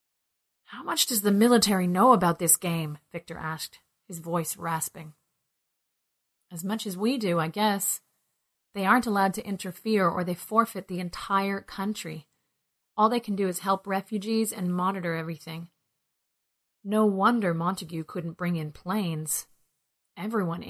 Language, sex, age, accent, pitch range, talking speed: English, female, 30-49, American, 165-215 Hz, 145 wpm